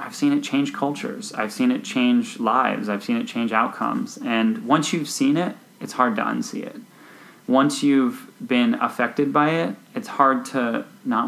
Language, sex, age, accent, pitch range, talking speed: English, male, 30-49, American, 110-160 Hz, 185 wpm